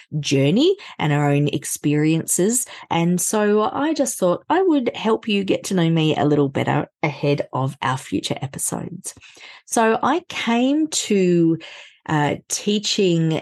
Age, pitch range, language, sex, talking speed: 30-49, 145-205 Hz, English, female, 145 wpm